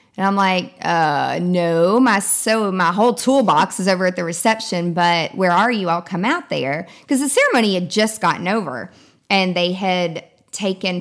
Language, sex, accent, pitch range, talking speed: English, female, American, 180-230 Hz, 185 wpm